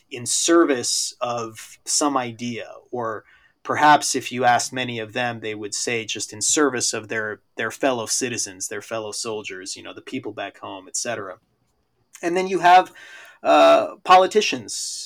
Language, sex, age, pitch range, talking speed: English, male, 30-49, 105-140 Hz, 165 wpm